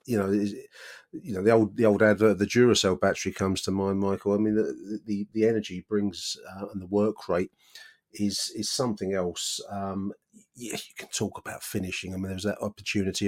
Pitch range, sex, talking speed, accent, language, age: 95-115 Hz, male, 210 wpm, British, English, 30-49